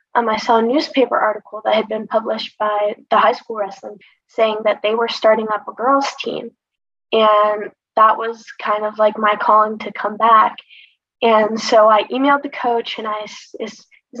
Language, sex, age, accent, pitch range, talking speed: English, female, 10-29, American, 215-240 Hz, 190 wpm